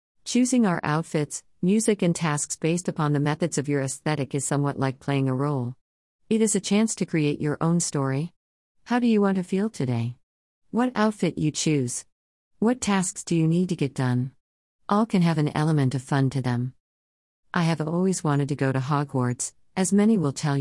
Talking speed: 200 wpm